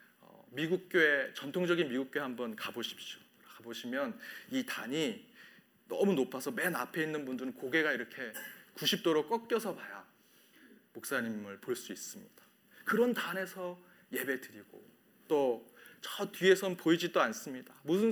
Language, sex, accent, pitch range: Korean, male, native, 160-225 Hz